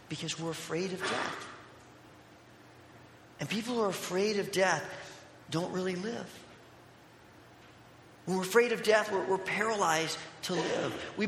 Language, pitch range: English, 160-200 Hz